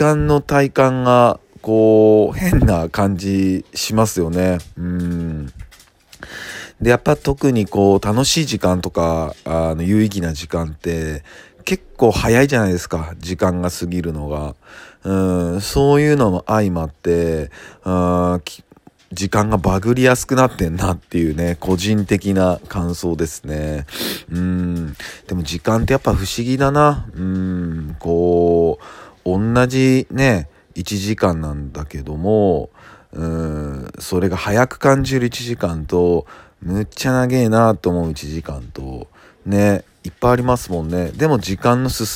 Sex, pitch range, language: male, 85-110 Hz, Japanese